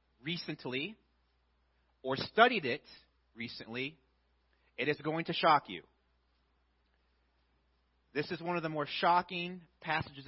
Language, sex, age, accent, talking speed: English, male, 30-49, American, 110 wpm